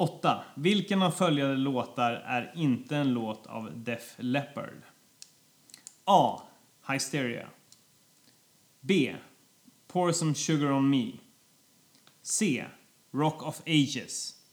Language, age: Swedish, 30-49